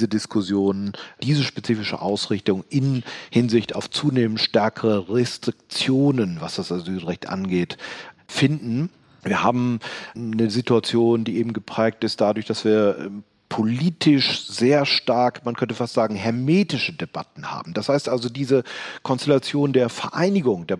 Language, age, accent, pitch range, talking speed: German, 40-59, German, 110-135 Hz, 130 wpm